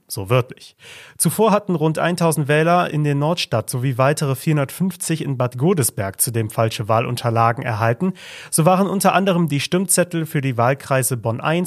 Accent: German